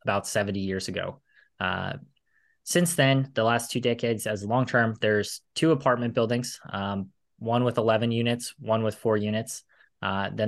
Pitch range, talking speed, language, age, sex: 100-120 Hz, 160 wpm, English, 20-39, male